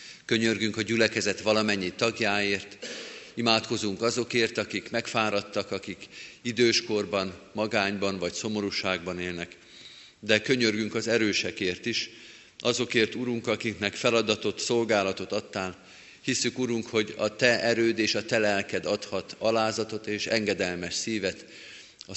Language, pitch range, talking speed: Hungarian, 100-115 Hz, 115 wpm